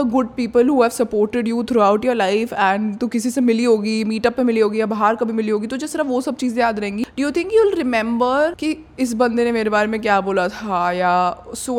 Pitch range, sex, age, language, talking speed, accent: 210-280 Hz, female, 20-39, Hindi, 250 wpm, native